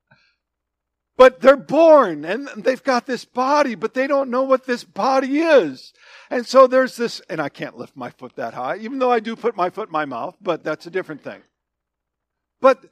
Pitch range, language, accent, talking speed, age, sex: 170-260 Hz, English, American, 205 wpm, 50-69, male